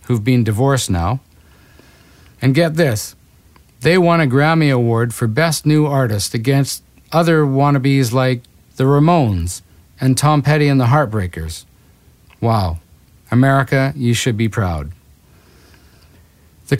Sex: male